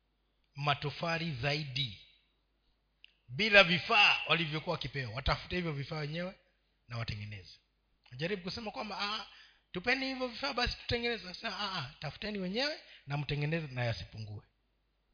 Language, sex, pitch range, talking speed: Swahili, male, 125-180 Hz, 110 wpm